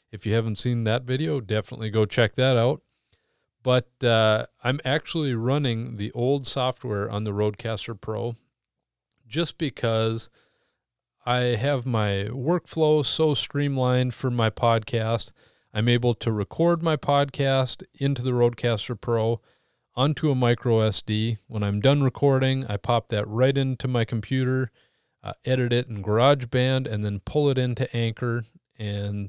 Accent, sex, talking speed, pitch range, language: American, male, 145 wpm, 110-130 Hz, English